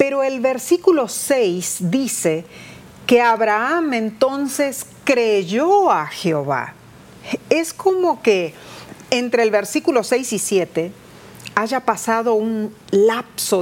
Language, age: Spanish, 40-59